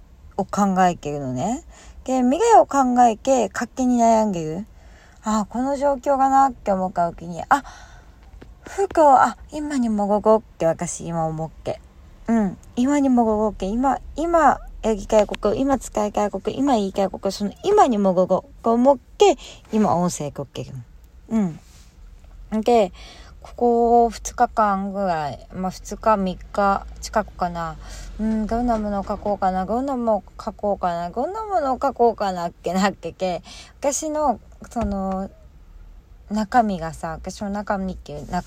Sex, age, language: female, 20-39, Japanese